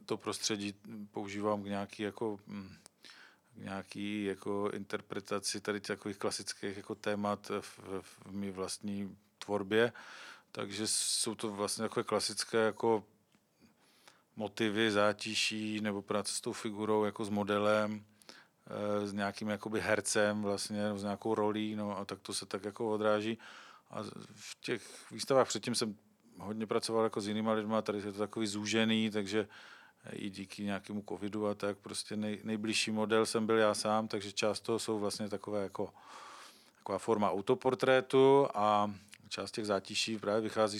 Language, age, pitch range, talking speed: Czech, 40-59, 100-110 Hz, 150 wpm